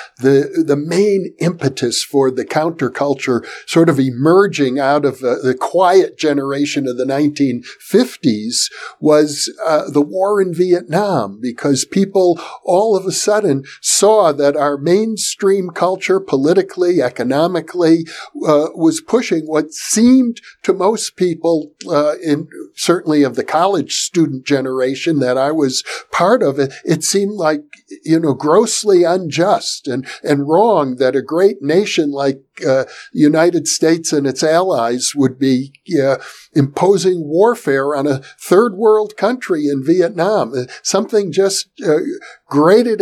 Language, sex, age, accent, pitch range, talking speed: English, male, 60-79, American, 145-195 Hz, 135 wpm